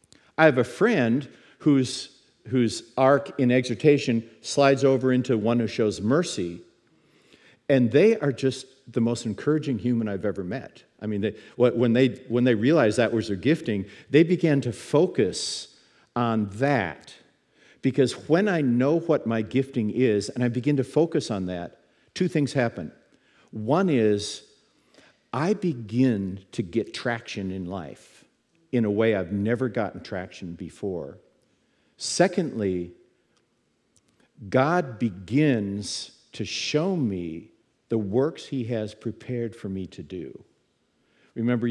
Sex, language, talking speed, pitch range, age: male, English, 140 wpm, 110-140 Hz, 50-69